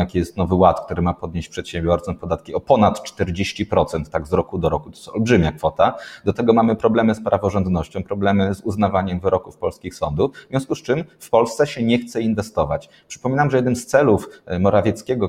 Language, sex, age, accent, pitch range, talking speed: Polish, male, 30-49, native, 90-115 Hz, 190 wpm